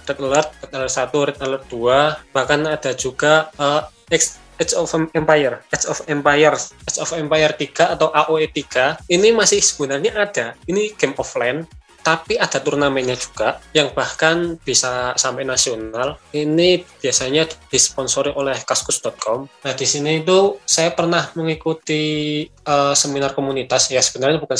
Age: 20-39